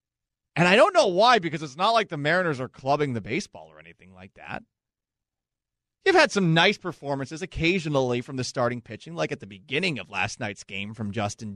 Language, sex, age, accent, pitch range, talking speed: English, male, 30-49, American, 135-215 Hz, 200 wpm